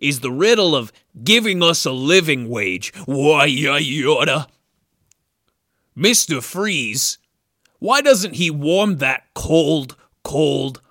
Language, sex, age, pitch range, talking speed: English, male, 30-49, 135-180 Hz, 110 wpm